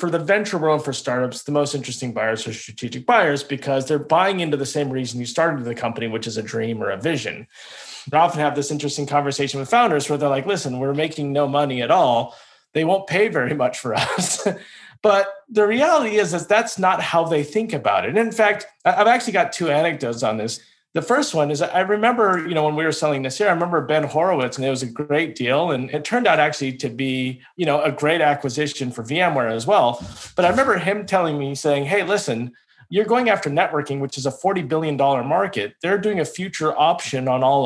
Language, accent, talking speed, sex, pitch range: English, American, 230 wpm, male, 135-180 Hz